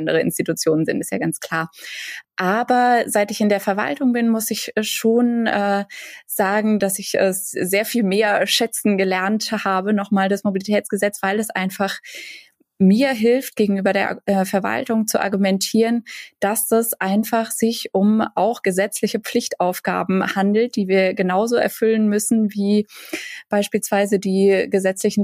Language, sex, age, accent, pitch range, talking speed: German, female, 20-39, German, 185-220 Hz, 145 wpm